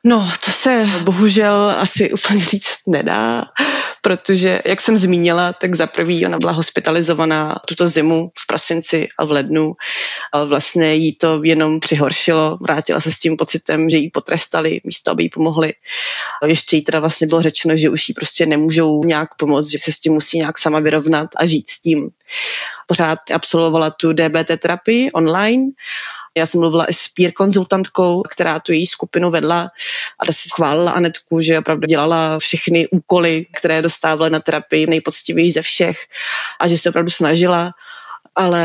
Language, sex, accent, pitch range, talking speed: Czech, female, native, 160-175 Hz, 165 wpm